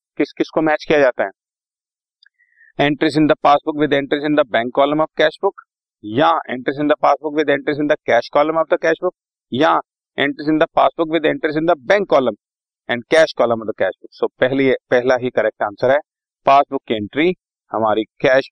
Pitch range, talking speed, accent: 120-165 Hz, 185 wpm, native